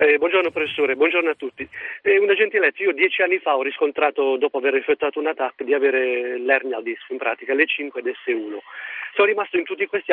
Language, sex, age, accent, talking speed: Italian, male, 50-69, native, 210 wpm